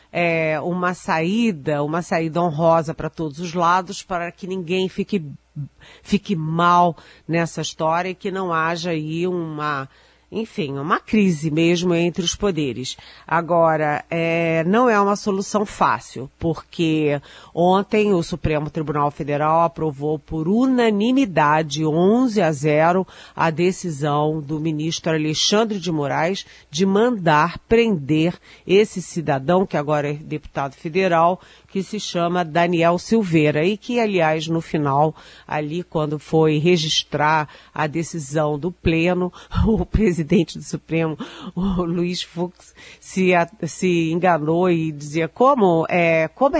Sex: female